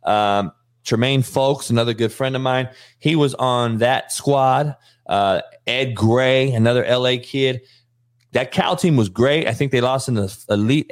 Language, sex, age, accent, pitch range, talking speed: English, male, 30-49, American, 115-135 Hz, 170 wpm